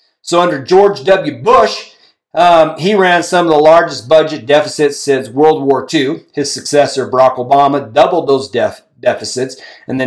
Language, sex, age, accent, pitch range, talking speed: English, male, 40-59, American, 140-175 Hz, 160 wpm